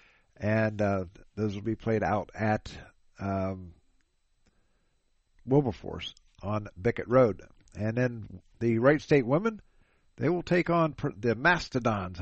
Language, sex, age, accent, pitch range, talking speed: English, male, 50-69, American, 105-135 Hz, 130 wpm